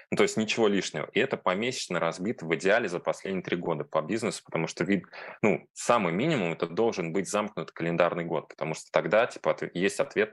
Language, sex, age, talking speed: Russian, male, 20-39, 200 wpm